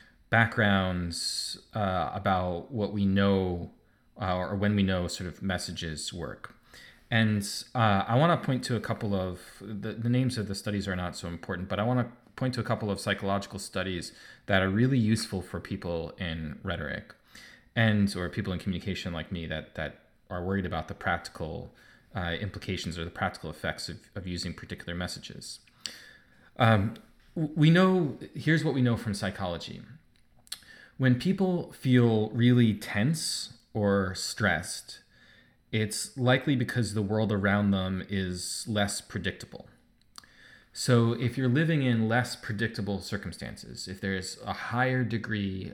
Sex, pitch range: male, 90-115 Hz